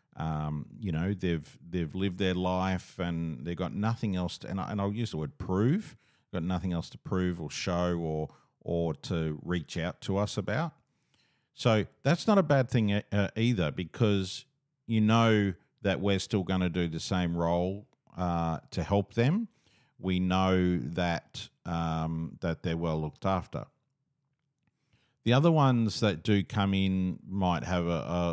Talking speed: 170 wpm